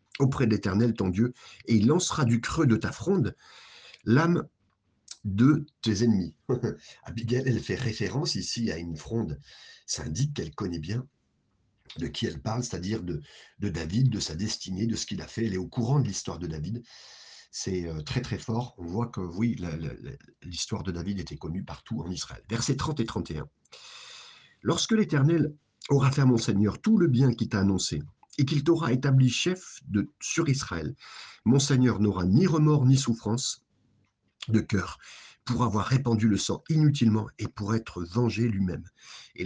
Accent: French